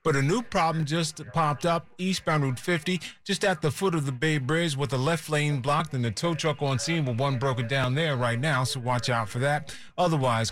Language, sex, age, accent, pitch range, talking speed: English, male, 30-49, American, 125-155 Hz, 240 wpm